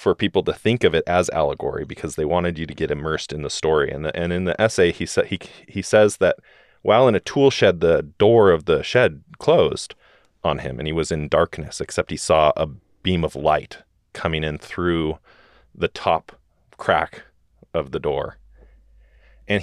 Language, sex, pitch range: English, male, 80-105 Hz